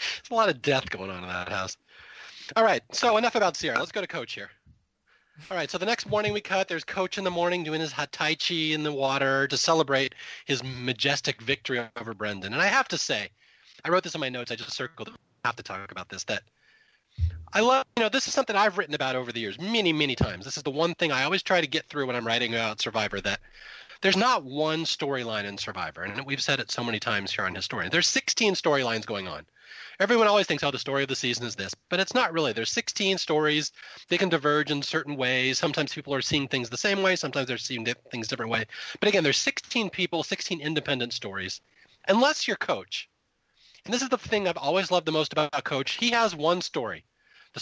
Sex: male